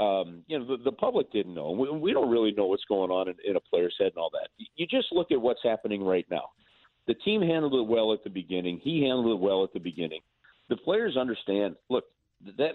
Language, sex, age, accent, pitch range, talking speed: English, male, 40-59, American, 105-135 Hz, 245 wpm